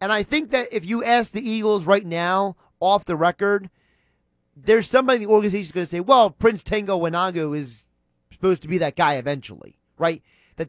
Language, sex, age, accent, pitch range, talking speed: English, male, 30-49, American, 165-205 Hz, 195 wpm